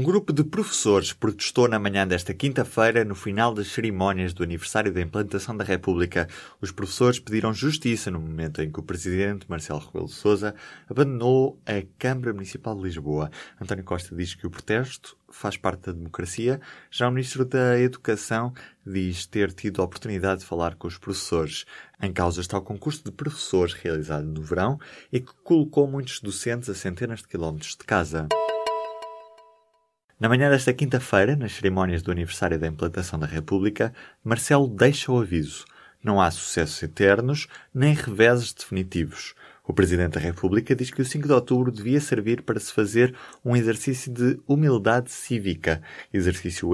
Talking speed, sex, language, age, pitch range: 165 wpm, male, Portuguese, 20-39, 95-125 Hz